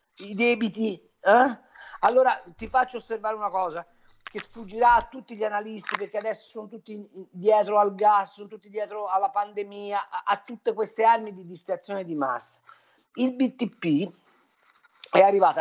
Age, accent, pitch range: 50-69, native, 180-245 Hz